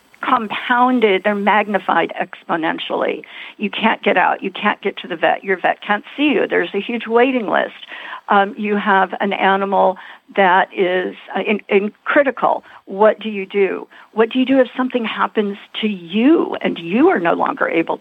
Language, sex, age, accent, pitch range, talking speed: English, female, 50-69, American, 195-265 Hz, 180 wpm